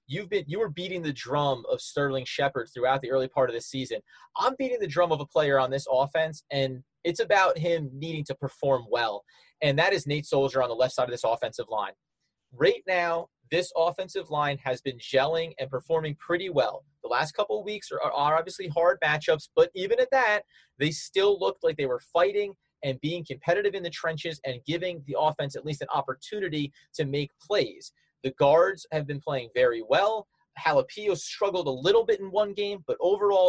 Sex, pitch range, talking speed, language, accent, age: male, 140-195 Hz, 205 wpm, English, American, 30-49